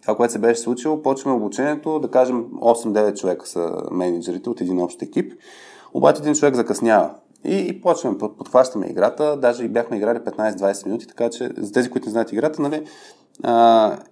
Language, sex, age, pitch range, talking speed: Bulgarian, male, 20-39, 105-135 Hz, 180 wpm